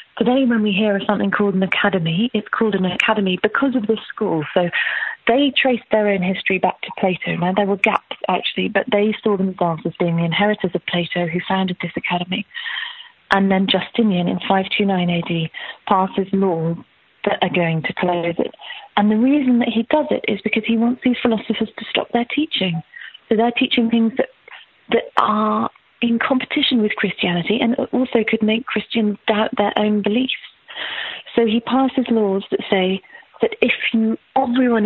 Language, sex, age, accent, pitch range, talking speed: English, female, 30-49, British, 185-230 Hz, 180 wpm